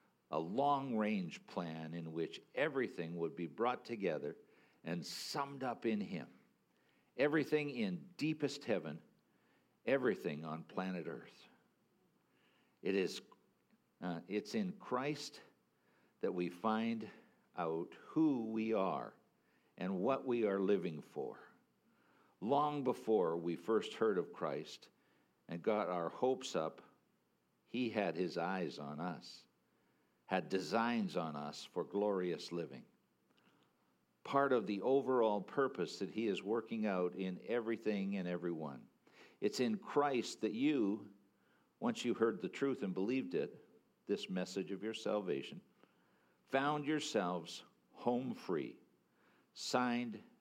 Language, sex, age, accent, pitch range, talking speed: English, male, 60-79, American, 95-140 Hz, 125 wpm